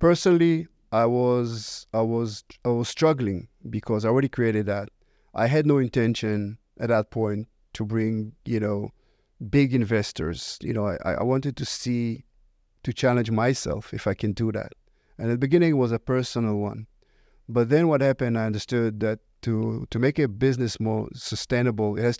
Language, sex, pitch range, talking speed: English, male, 110-125 Hz, 180 wpm